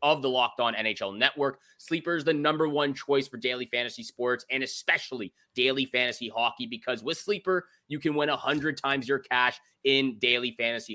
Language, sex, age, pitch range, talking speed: English, male, 20-39, 125-145 Hz, 190 wpm